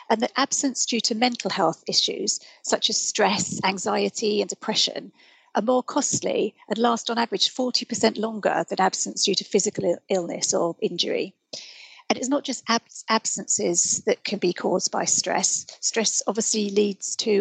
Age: 40-59